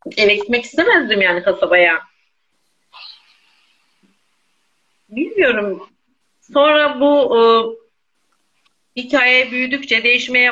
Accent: native